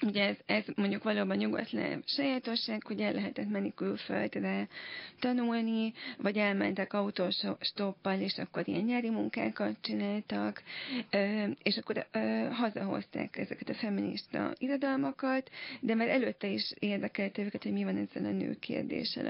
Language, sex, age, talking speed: Hungarian, female, 30-49, 130 wpm